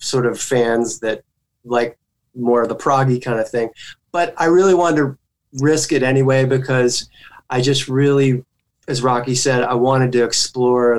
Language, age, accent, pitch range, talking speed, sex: English, 30-49, American, 120-140 Hz, 170 wpm, male